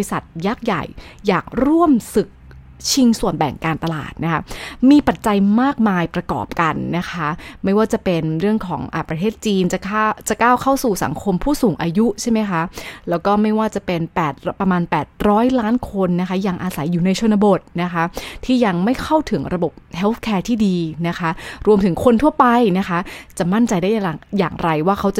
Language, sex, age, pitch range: English, female, 20-39, 170-215 Hz